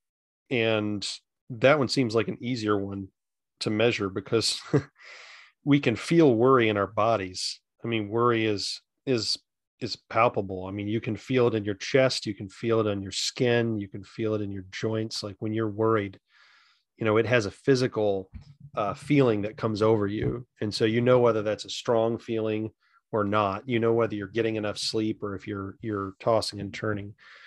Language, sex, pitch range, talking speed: English, male, 105-125 Hz, 195 wpm